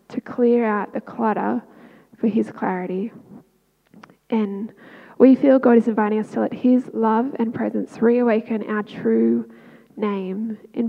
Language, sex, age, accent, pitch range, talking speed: English, female, 10-29, Australian, 210-235 Hz, 145 wpm